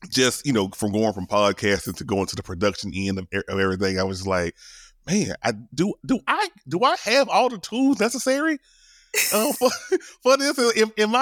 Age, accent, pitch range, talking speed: 30-49, American, 110-185 Hz, 200 wpm